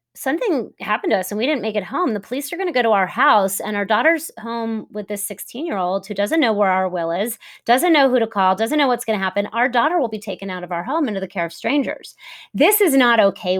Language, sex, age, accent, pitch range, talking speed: English, female, 30-49, American, 200-275 Hz, 275 wpm